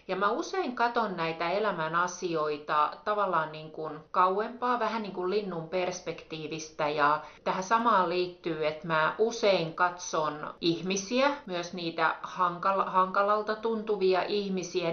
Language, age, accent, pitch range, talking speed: Finnish, 30-49, native, 165-215 Hz, 115 wpm